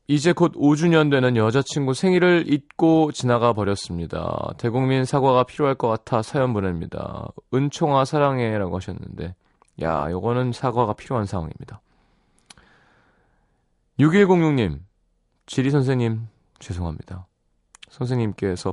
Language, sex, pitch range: Korean, male, 85-140 Hz